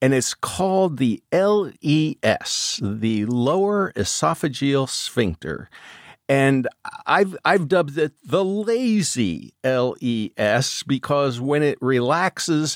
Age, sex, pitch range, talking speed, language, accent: 50-69, male, 120-175 Hz, 100 wpm, English, American